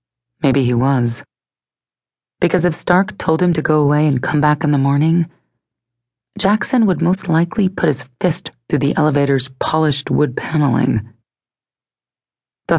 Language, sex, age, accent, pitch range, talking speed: English, female, 30-49, American, 125-170 Hz, 145 wpm